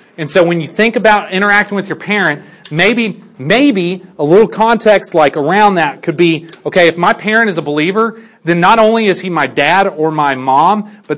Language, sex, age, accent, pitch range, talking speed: English, male, 40-59, American, 145-190 Hz, 205 wpm